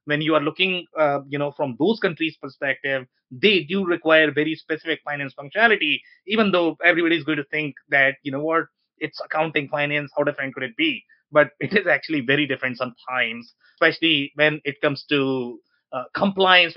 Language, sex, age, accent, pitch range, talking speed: English, male, 30-49, Indian, 145-200 Hz, 185 wpm